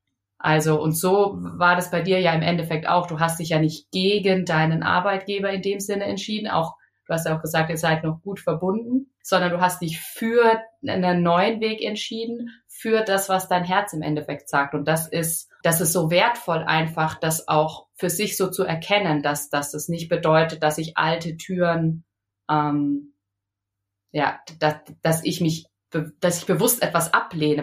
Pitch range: 155-190 Hz